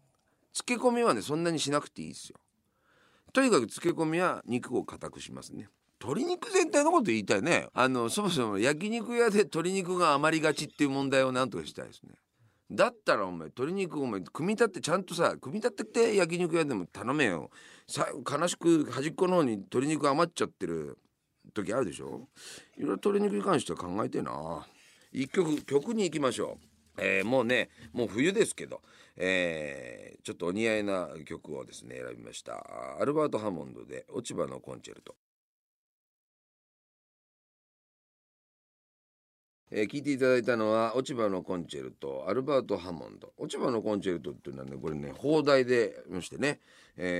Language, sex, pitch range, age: Japanese, male, 115-185 Hz, 40-59